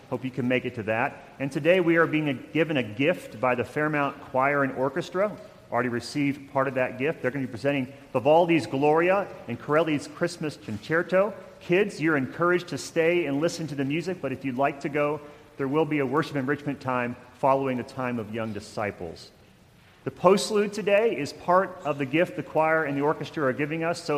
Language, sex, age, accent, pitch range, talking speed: English, male, 40-59, American, 125-150 Hz, 210 wpm